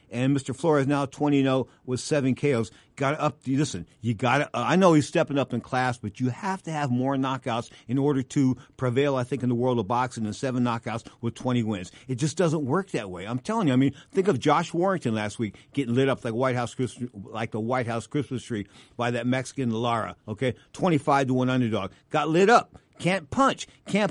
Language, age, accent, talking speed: English, 50-69, American, 220 wpm